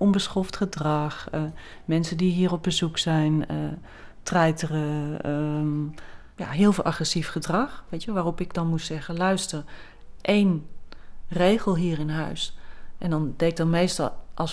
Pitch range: 150-180 Hz